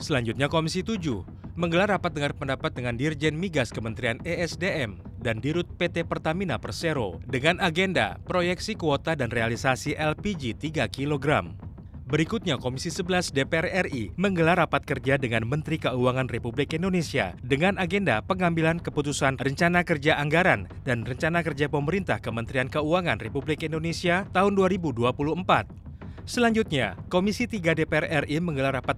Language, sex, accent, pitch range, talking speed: Indonesian, male, native, 125-170 Hz, 130 wpm